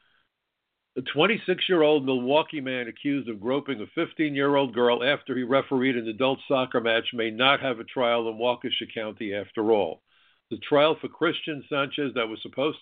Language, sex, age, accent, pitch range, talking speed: English, male, 60-79, American, 115-140 Hz, 165 wpm